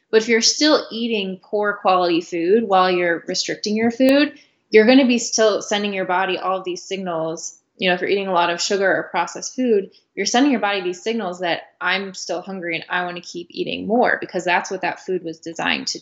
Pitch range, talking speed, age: 180-225 Hz, 230 wpm, 20-39